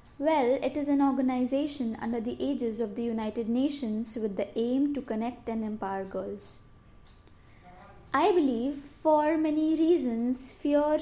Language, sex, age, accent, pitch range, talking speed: English, female, 20-39, Indian, 235-300 Hz, 140 wpm